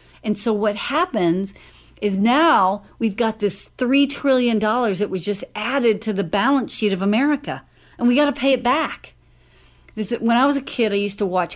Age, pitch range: 40-59, 190-235 Hz